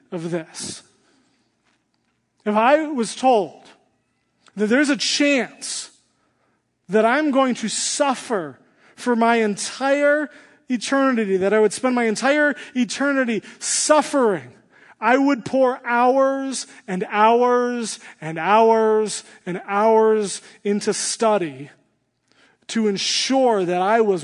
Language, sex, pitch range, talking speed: English, male, 185-240 Hz, 110 wpm